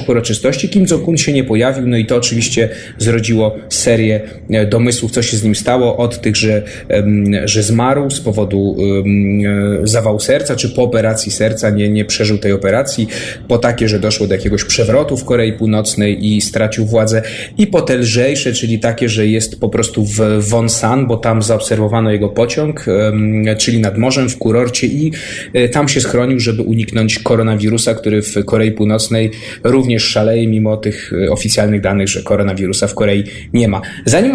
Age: 30-49